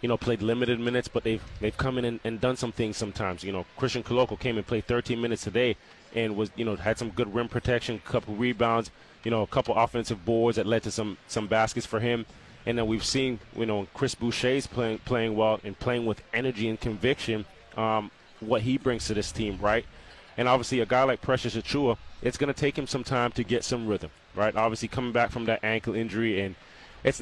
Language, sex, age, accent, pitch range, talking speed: English, male, 20-39, American, 110-120 Hz, 230 wpm